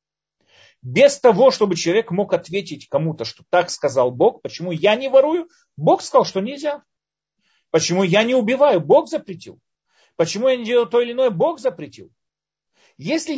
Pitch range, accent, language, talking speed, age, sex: 135-225 Hz, native, Russian, 155 wpm, 40-59, male